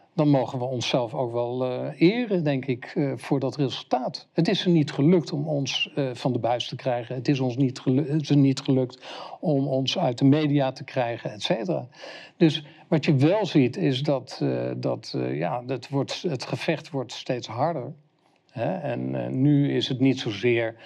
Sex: male